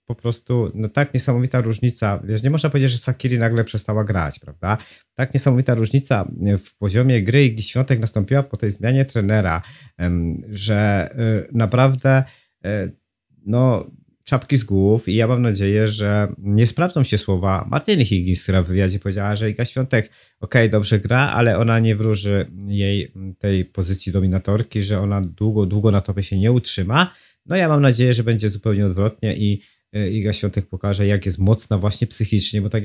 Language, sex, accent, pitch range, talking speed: Polish, male, native, 100-125 Hz, 170 wpm